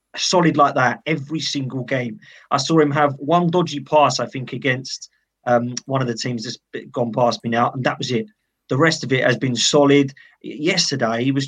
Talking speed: 210 wpm